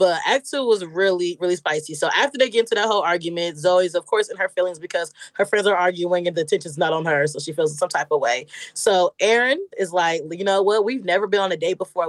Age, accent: 20-39, American